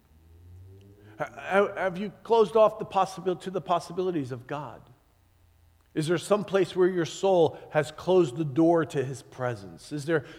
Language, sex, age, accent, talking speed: English, male, 40-59, American, 155 wpm